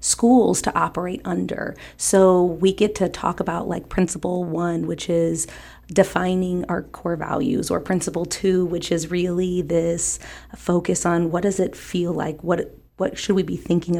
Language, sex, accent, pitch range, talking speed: English, female, American, 170-190 Hz, 165 wpm